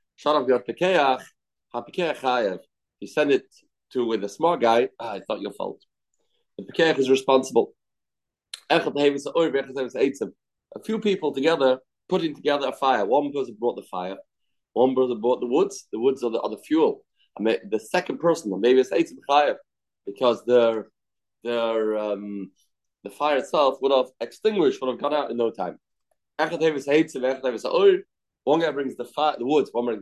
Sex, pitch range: male, 120-170 Hz